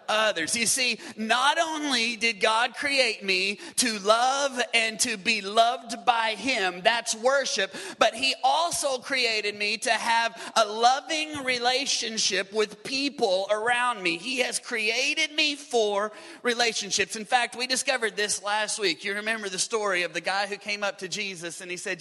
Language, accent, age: English, American, 30-49